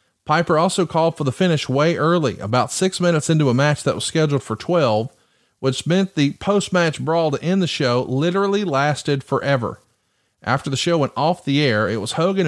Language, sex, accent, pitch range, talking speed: English, male, American, 125-160 Hz, 195 wpm